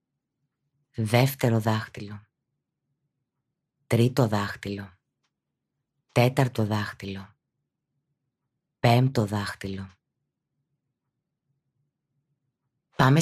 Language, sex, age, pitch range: Greek, female, 30-49, 115-140 Hz